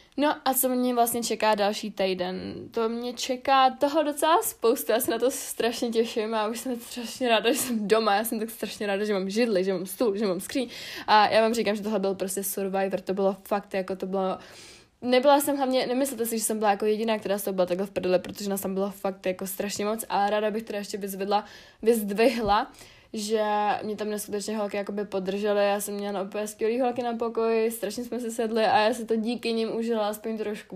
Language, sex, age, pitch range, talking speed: Czech, female, 20-39, 195-230 Hz, 230 wpm